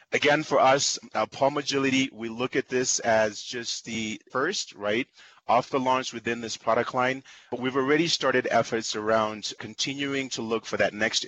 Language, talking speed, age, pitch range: English, 180 wpm, 30-49, 105-130 Hz